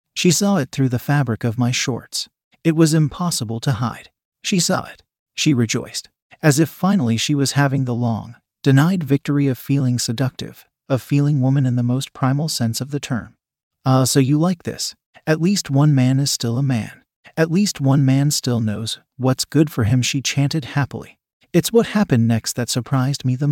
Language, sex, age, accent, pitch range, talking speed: English, male, 40-59, American, 125-160 Hz, 195 wpm